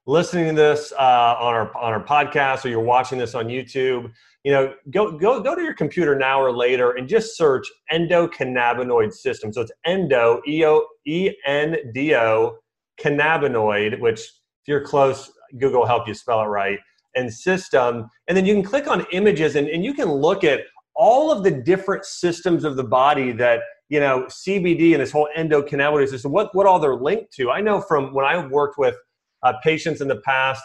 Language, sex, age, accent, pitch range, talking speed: English, male, 30-49, American, 130-185 Hz, 200 wpm